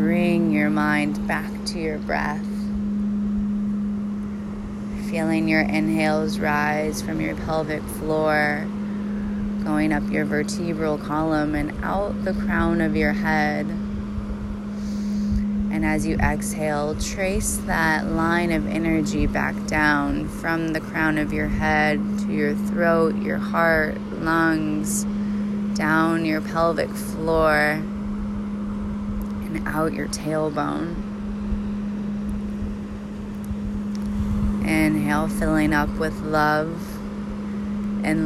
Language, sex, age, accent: English, female, 20-39, American